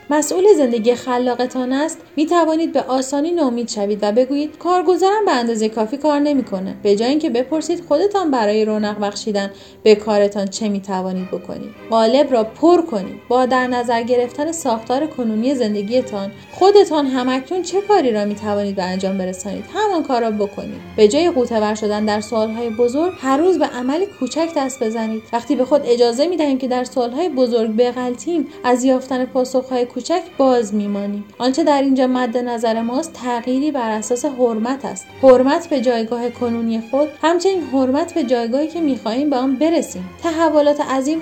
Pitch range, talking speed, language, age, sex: 225-300 Hz, 165 wpm, Persian, 30-49, female